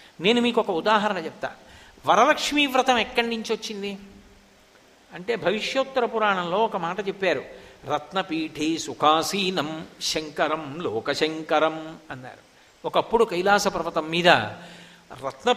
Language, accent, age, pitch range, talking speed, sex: English, Indian, 60-79, 160-225 Hz, 110 wpm, male